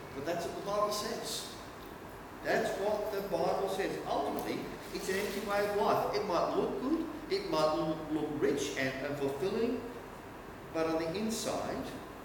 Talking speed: 155 wpm